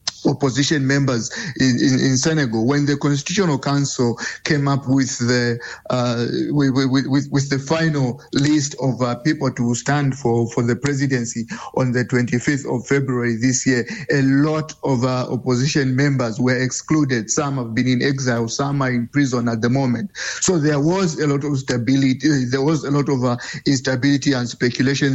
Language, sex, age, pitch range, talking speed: English, male, 50-69, 125-145 Hz, 175 wpm